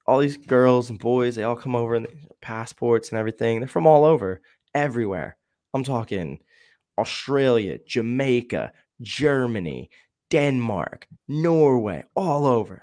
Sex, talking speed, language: male, 125 wpm, English